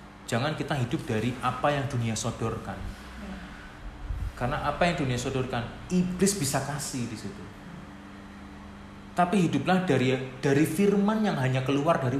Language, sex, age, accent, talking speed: Indonesian, male, 30-49, native, 135 wpm